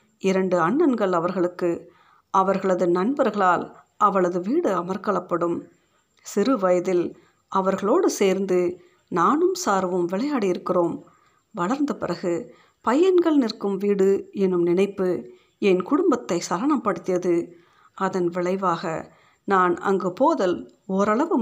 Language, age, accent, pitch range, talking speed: Tamil, 50-69, native, 175-215 Hz, 90 wpm